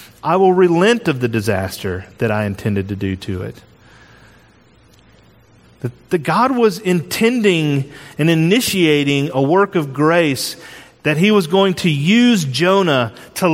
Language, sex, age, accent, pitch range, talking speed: English, male, 40-59, American, 130-185 Hz, 135 wpm